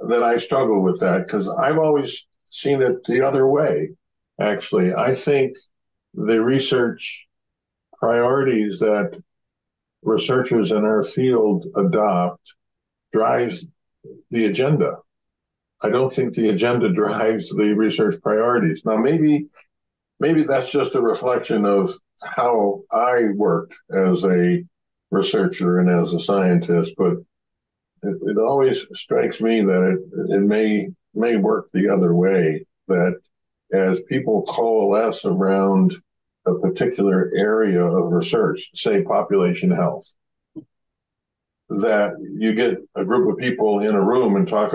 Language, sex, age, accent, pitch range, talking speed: English, male, 60-79, American, 95-130 Hz, 125 wpm